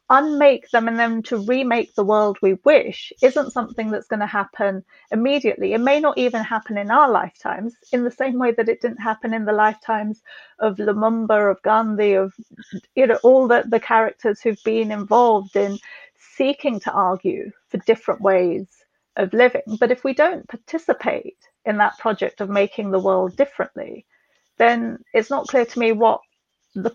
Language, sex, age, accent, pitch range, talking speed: English, female, 40-59, British, 210-250 Hz, 180 wpm